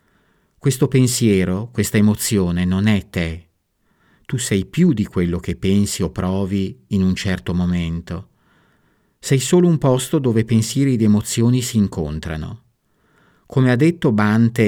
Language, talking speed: Italian, 140 wpm